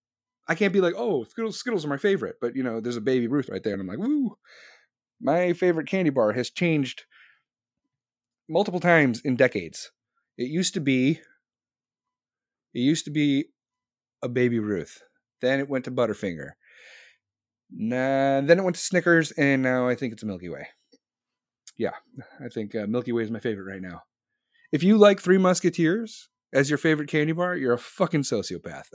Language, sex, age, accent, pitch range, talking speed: English, male, 30-49, American, 125-180 Hz, 180 wpm